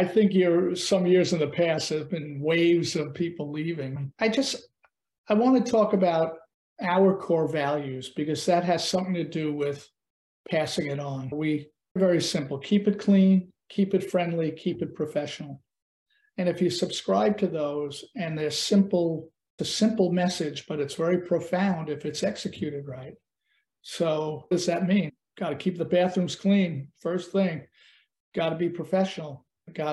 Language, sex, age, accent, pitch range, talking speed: English, male, 50-69, American, 155-185 Hz, 170 wpm